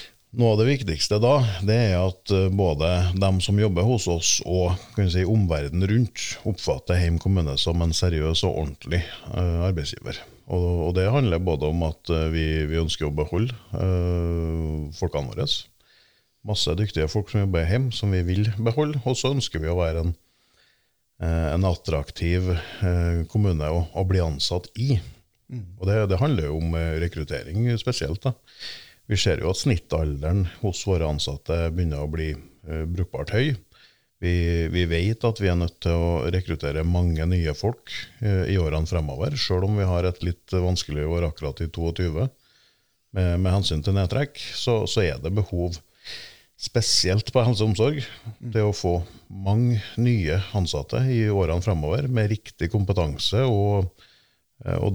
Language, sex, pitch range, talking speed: Danish, male, 80-105 Hz, 155 wpm